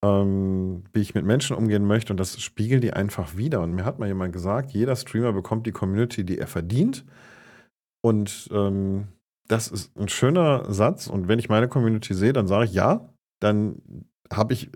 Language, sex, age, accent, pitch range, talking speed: German, male, 40-59, German, 100-120 Hz, 185 wpm